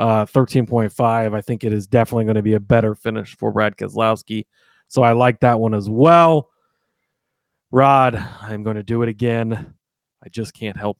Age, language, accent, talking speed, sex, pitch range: 30-49, English, American, 185 wpm, male, 115-135 Hz